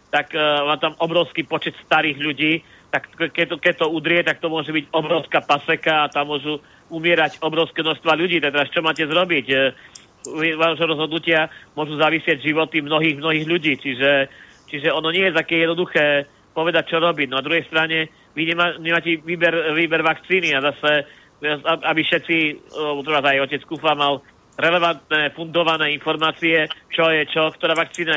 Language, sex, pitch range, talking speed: Slovak, male, 145-160 Hz, 165 wpm